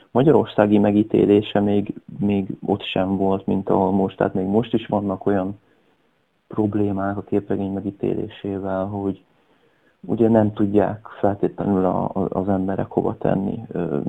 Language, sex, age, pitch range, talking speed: Hungarian, male, 30-49, 95-105 Hz, 125 wpm